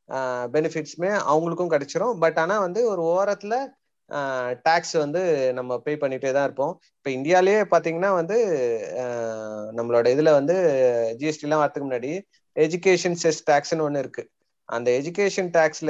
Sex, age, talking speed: male, 30-49, 130 wpm